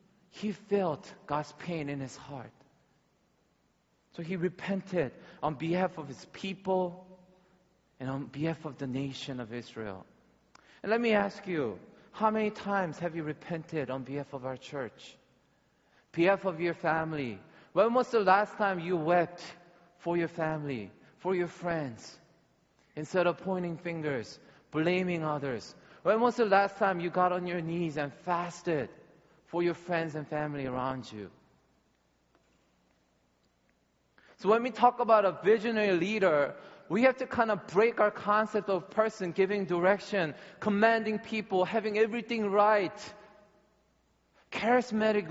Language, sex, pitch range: Korean, male, 160-205 Hz